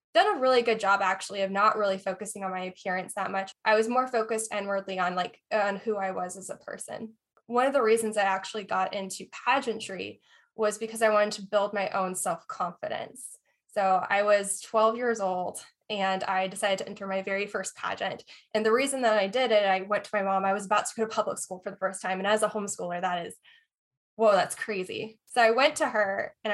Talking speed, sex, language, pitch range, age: 230 wpm, female, English, 195-225 Hz, 10-29